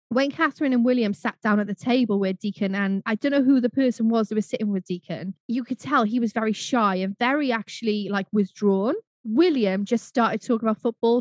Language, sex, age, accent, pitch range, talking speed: English, female, 10-29, British, 205-270 Hz, 225 wpm